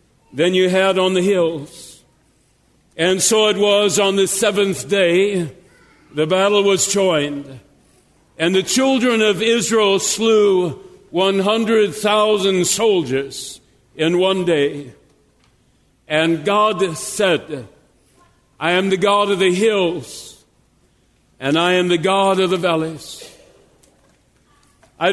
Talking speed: 115 wpm